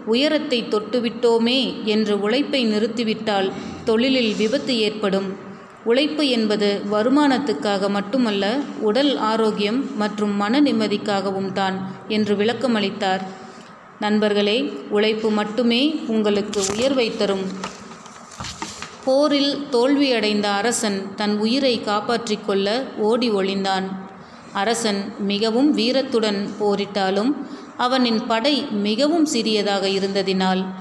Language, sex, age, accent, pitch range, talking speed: Tamil, female, 30-49, native, 200-245 Hz, 85 wpm